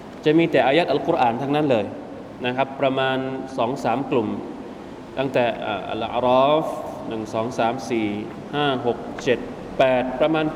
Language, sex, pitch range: Thai, male, 125-155 Hz